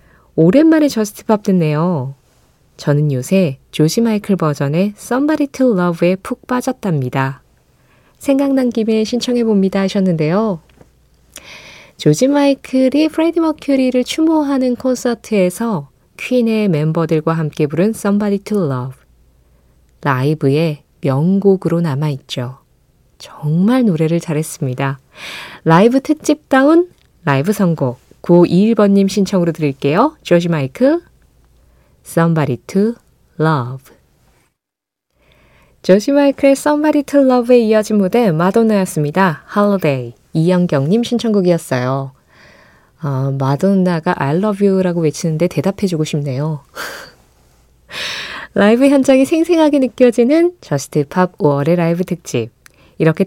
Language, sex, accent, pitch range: Korean, female, native, 145-230 Hz